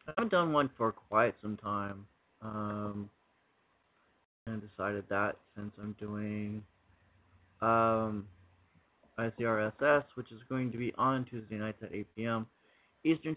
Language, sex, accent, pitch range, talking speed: English, male, American, 105-130 Hz, 125 wpm